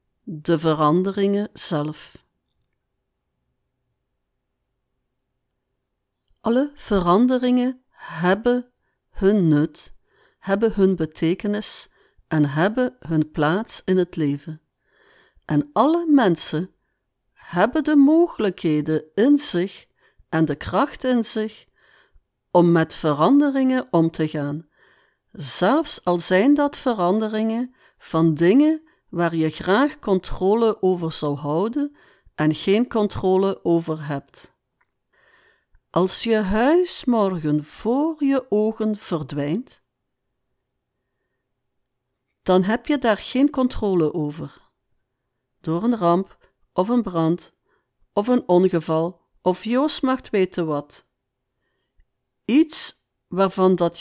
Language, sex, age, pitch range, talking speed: Dutch, female, 60-79, 155-245 Hz, 100 wpm